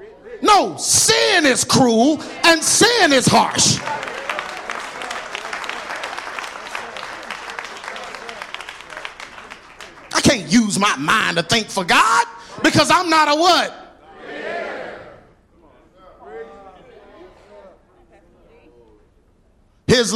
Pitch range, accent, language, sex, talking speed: 150-235 Hz, American, English, male, 70 wpm